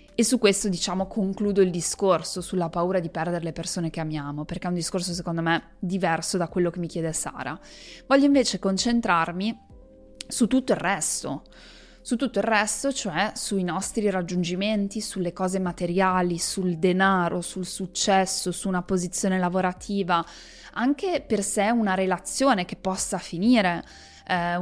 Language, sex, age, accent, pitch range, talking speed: Italian, female, 20-39, native, 175-210 Hz, 155 wpm